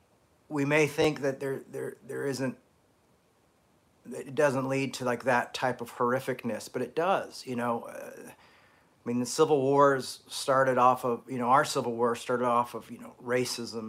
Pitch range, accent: 120-140 Hz, American